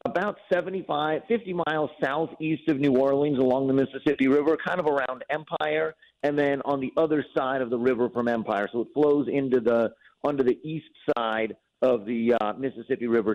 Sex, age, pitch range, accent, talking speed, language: male, 50-69, 125-160 Hz, American, 185 wpm, English